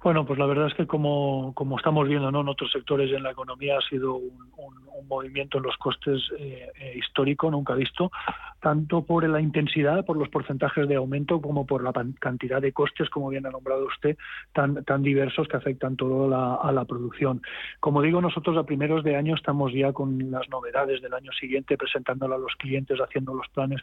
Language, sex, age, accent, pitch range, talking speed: Spanish, male, 40-59, Spanish, 130-150 Hz, 205 wpm